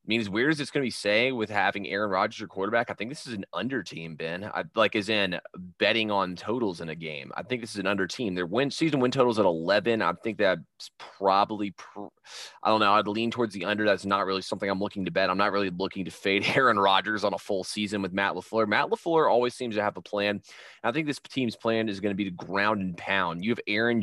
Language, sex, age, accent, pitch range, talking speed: English, male, 20-39, American, 95-115 Hz, 270 wpm